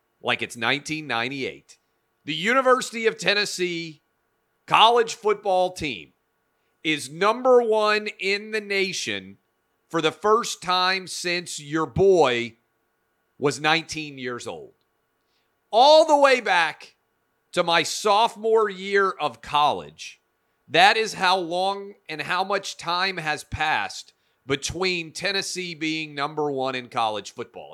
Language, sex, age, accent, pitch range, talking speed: English, male, 40-59, American, 140-195 Hz, 120 wpm